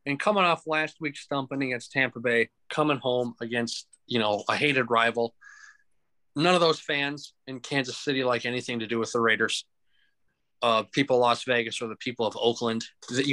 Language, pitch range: English, 120-150 Hz